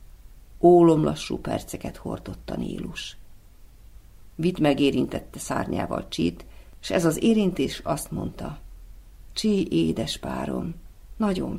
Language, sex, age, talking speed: Hungarian, female, 50-69, 105 wpm